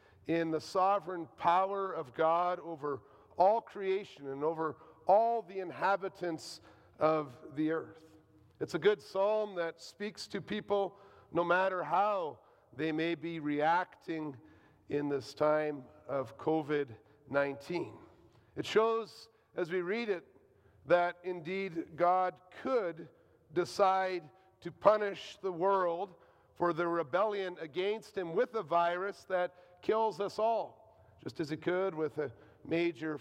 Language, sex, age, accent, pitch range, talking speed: English, male, 50-69, American, 155-190 Hz, 130 wpm